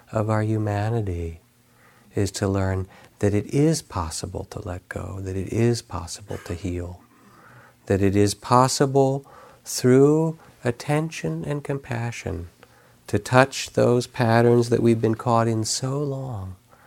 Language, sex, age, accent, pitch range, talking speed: English, male, 50-69, American, 95-130 Hz, 135 wpm